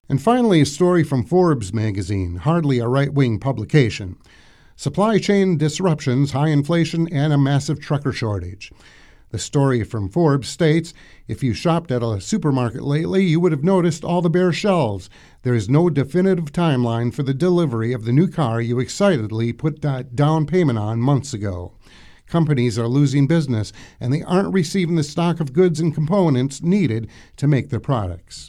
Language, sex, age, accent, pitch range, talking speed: English, male, 50-69, American, 115-160 Hz, 170 wpm